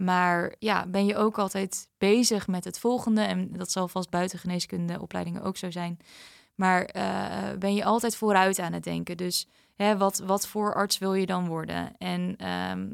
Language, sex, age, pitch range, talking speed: Dutch, female, 20-39, 180-210 Hz, 180 wpm